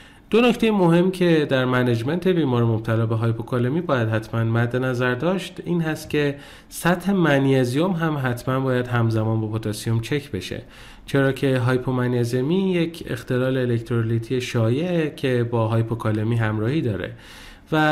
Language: Persian